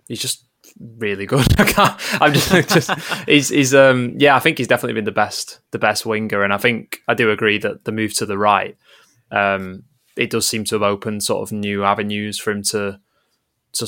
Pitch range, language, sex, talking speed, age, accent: 100-120 Hz, English, male, 210 wpm, 20-39, British